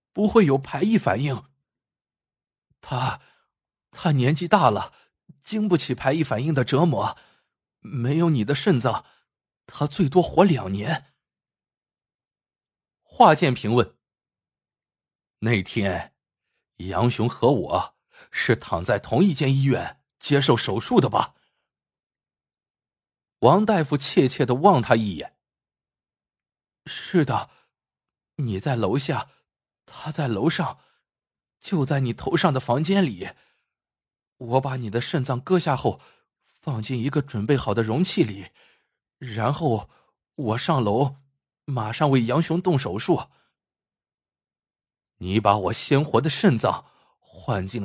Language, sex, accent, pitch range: Chinese, male, native, 115-160 Hz